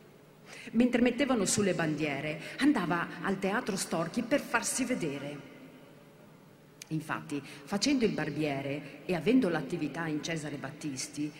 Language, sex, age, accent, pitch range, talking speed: Italian, female, 40-59, native, 150-200 Hz, 110 wpm